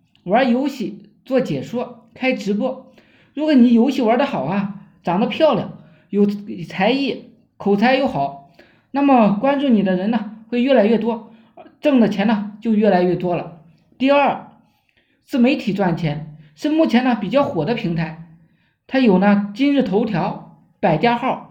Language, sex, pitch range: Chinese, male, 190-260 Hz